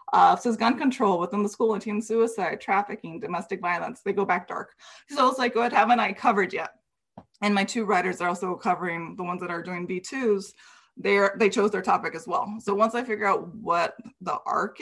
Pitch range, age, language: 195-240 Hz, 20-39, English